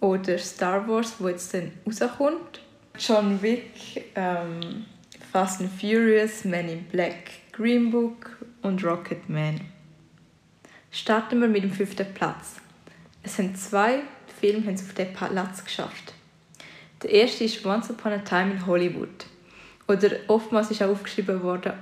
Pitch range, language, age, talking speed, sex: 190-220 Hz, German, 20-39, 145 wpm, female